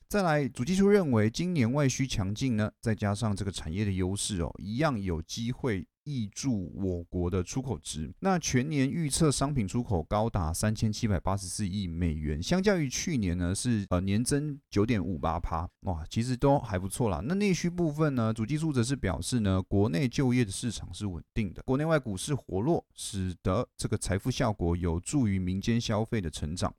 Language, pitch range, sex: Chinese, 95-130 Hz, male